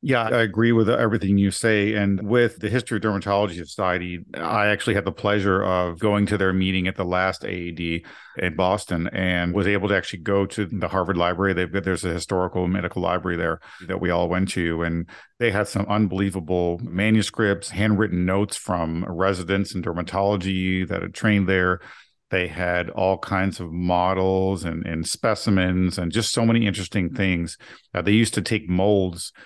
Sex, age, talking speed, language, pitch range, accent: male, 50-69, 180 wpm, English, 90-100 Hz, American